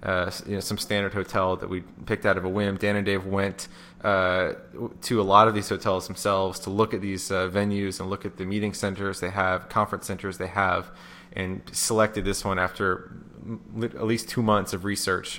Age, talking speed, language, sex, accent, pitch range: 20-39, 210 wpm, English, male, American, 95-105 Hz